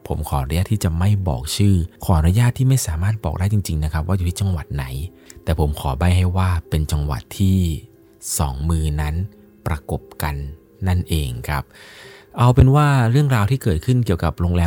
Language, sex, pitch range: Thai, male, 75-95 Hz